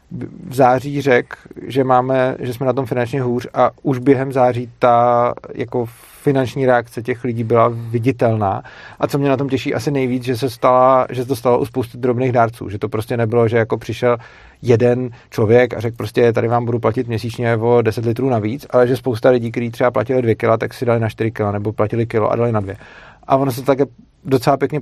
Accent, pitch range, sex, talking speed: native, 115-130 Hz, male, 215 wpm